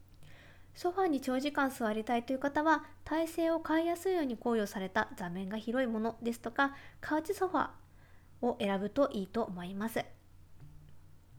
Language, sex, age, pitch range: Japanese, female, 20-39, 195-290 Hz